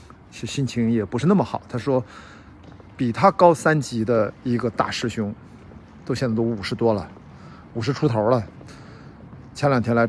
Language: Chinese